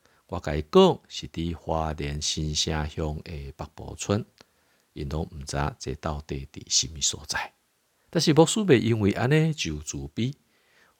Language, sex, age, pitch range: Chinese, male, 50-69, 75-105 Hz